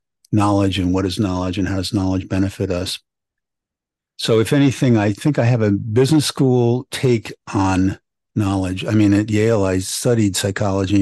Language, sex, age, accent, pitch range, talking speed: English, male, 50-69, American, 95-110 Hz, 170 wpm